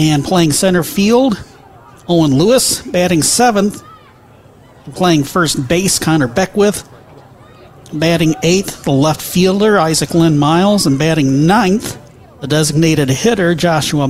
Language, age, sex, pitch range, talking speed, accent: English, 40-59, male, 150-190 Hz, 120 wpm, American